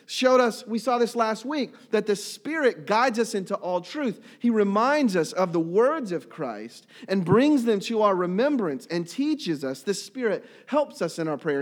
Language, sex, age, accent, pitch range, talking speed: English, male, 40-59, American, 160-230 Hz, 200 wpm